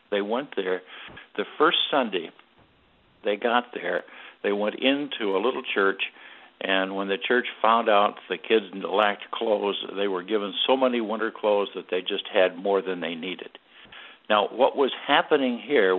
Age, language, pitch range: 60-79, English, 100-120 Hz